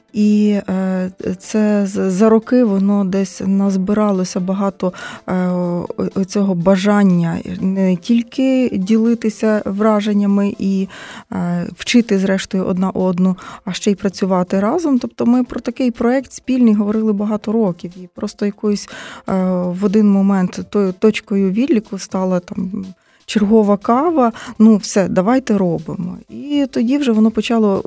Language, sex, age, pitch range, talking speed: Ukrainian, female, 20-39, 180-215 Hz, 120 wpm